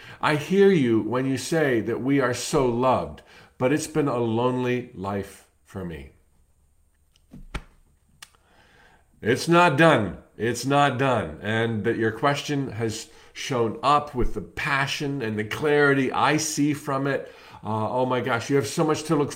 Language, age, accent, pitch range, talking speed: English, 50-69, American, 115-155 Hz, 160 wpm